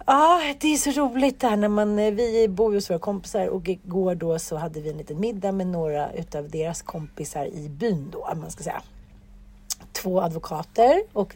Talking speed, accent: 205 wpm, native